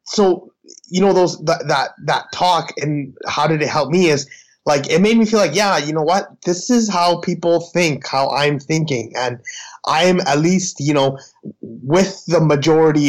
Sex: male